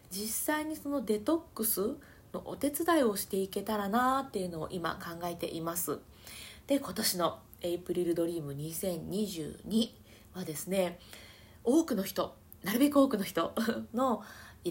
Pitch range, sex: 170-250 Hz, female